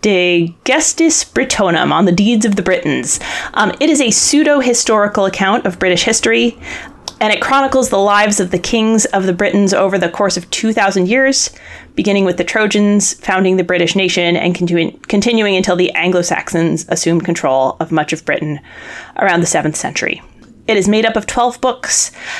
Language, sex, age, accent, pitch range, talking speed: English, female, 30-49, American, 180-225 Hz, 175 wpm